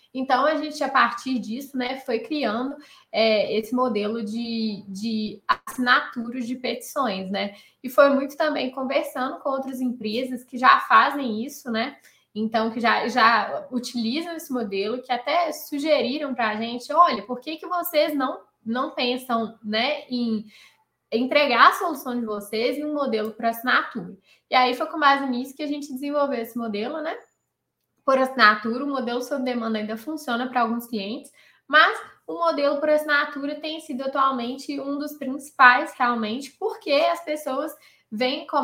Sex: female